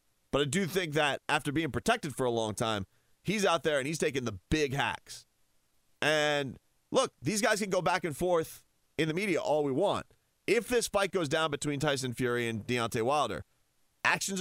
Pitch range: 130-200 Hz